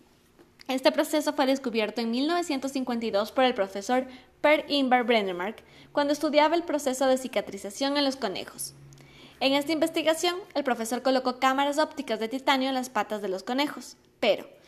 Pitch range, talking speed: 220-285 Hz, 155 wpm